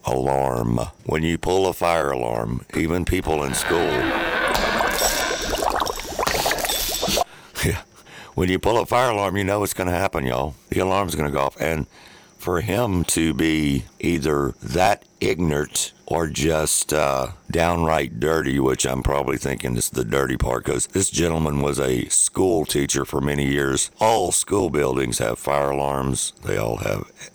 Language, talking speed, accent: English, 160 wpm, American